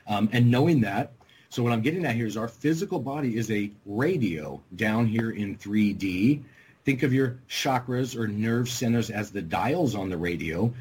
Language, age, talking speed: English, 40-59, 190 wpm